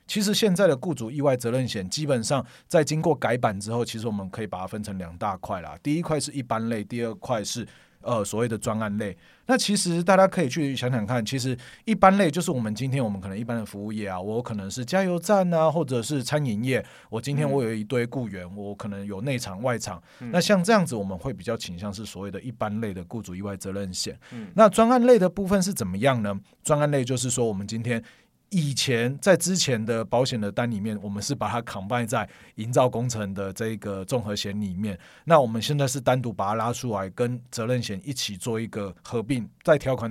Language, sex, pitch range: Chinese, male, 110-150 Hz